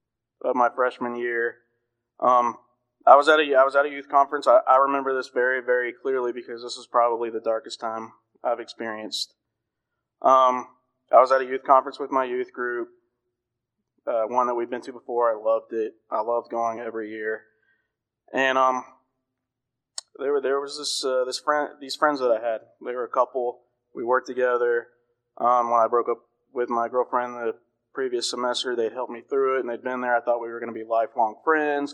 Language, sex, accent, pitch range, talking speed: English, male, American, 120-130 Hz, 205 wpm